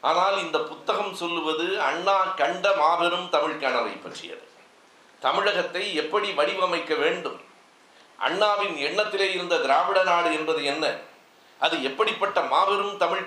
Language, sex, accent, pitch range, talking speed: Tamil, male, native, 160-205 Hz, 115 wpm